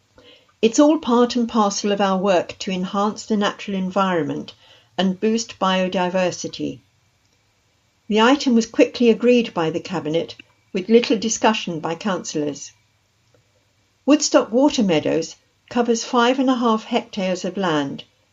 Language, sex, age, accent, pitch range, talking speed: English, female, 60-79, British, 165-230 Hz, 130 wpm